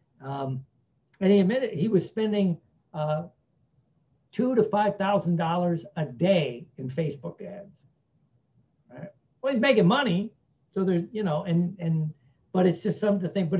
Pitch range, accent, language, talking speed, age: 150-195 Hz, American, English, 150 wpm, 60-79